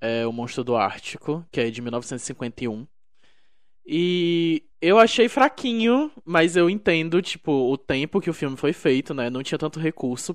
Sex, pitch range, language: male, 130-175 Hz, Portuguese